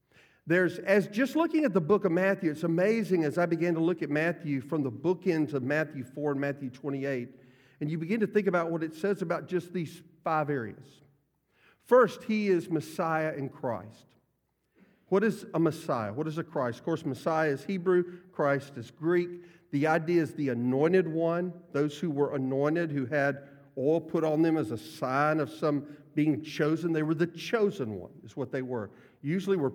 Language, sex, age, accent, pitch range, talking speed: English, male, 50-69, American, 140-180 Hz, 195 wpm